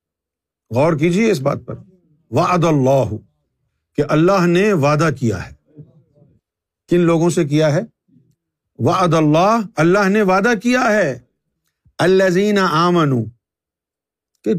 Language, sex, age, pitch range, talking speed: Urdu, male, 50-69, 130-180 Hz, 115 wpm